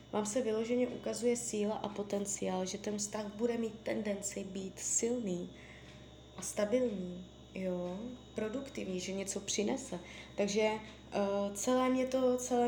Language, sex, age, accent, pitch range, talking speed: Czech, female, 20-39, native, 180-215 Hz, 130 wpm